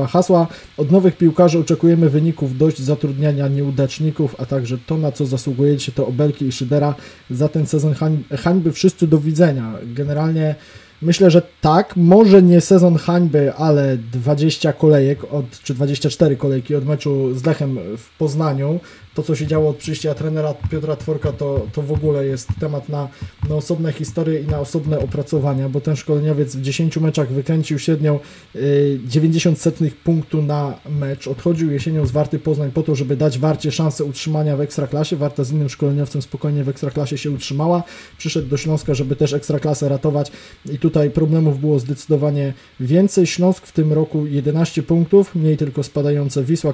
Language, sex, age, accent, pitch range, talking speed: Polish, male, 20-39, native, 140-160 Hz, 170 wpm